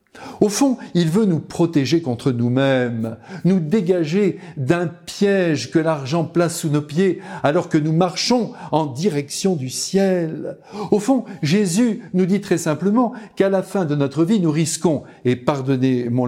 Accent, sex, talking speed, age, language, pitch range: French, male, 160 wpm, 60-79, French, 140-205 Hz